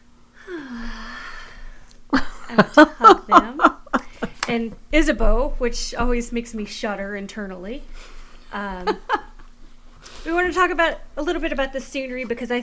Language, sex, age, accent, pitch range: English, female, 30-49, American, 200-260 Hz